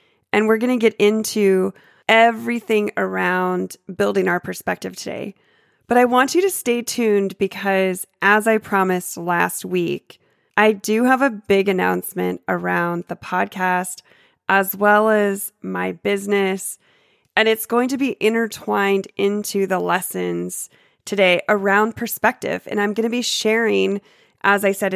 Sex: female